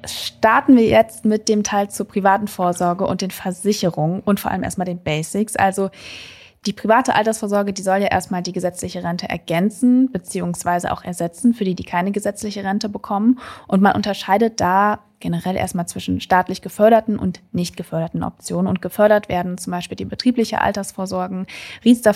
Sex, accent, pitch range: female, German, 180-220 Hz